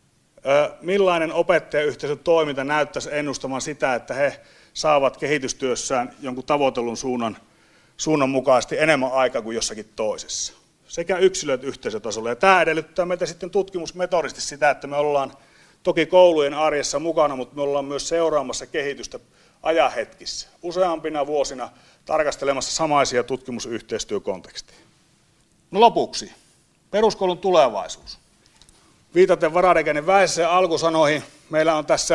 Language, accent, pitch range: Finnish, native, 140-180 Hz